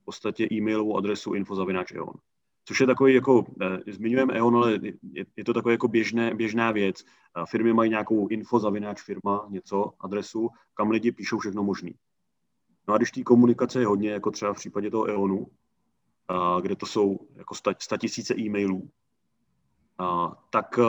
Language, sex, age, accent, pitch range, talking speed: Czech, male, 30-49, native, 100-115 Hz, 150 wpm